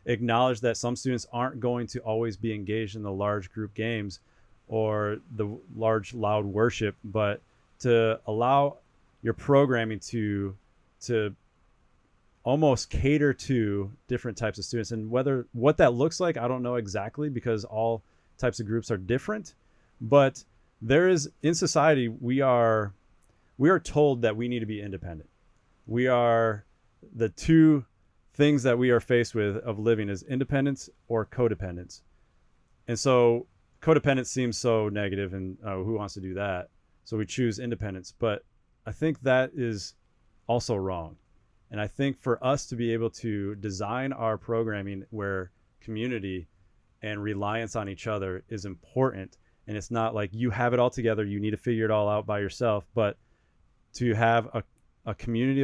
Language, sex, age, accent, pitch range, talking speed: English, male, 30-49, American, 105-125 Hz, 165 wpm